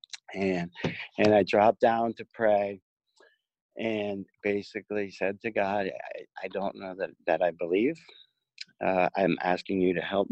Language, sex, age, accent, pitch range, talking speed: English, male, 50-69, American, 90-105 Hz, 150 wpm